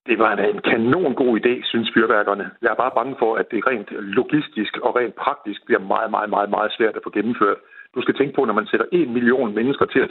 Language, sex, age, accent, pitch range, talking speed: Danish, male, 60-79, native, 115-175 Hz, 245 wpm